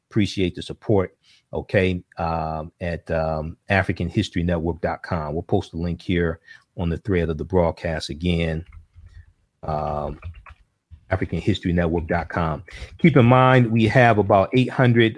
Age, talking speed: 40-59, 130 wpm